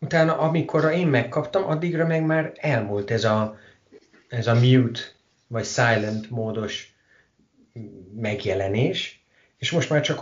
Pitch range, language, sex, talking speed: 100-125 Hz, Hungarian, male, 115 wpm